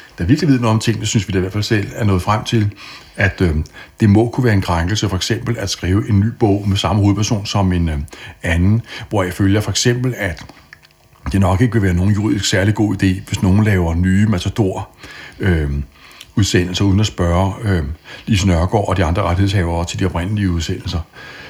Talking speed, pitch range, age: 205 wpm, 90-110 Hz, 60-79